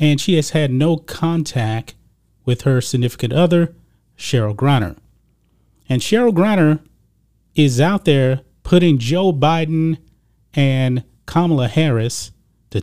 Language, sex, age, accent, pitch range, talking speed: English, male, 30-49, American, 120-155 Hz, 115 wpm